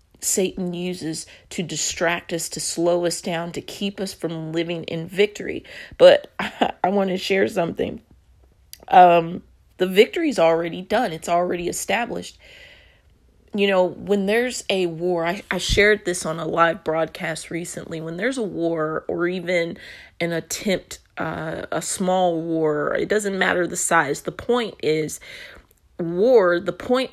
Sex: female